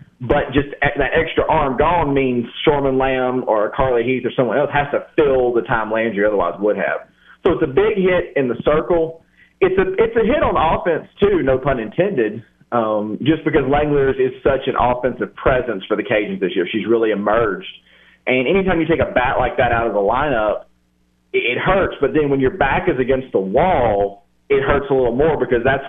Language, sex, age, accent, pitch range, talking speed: English, male, 30-49, American, 110-150 Hz, 210 wpm